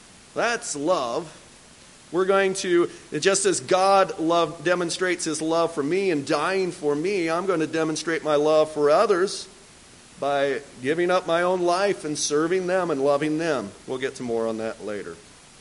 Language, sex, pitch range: English, male, 150-210 Hz